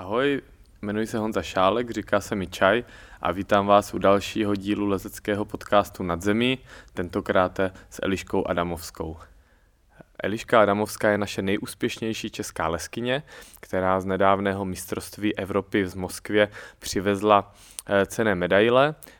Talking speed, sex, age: 120 wpm, male, 20-39